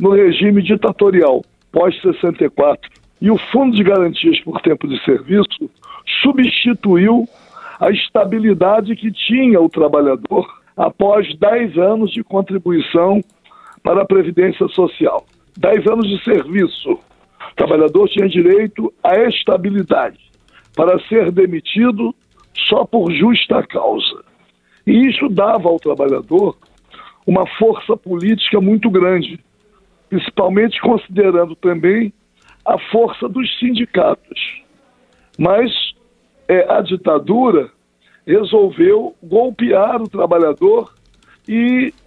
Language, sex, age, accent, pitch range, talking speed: Portuguese, male, 60-79, Brazilian, 190-245 Hz, 100 wpm